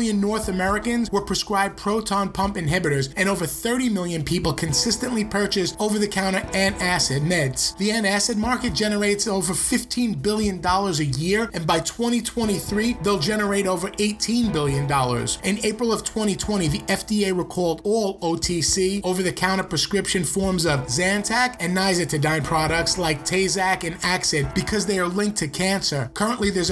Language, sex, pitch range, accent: English, male, 170-205 Hz, American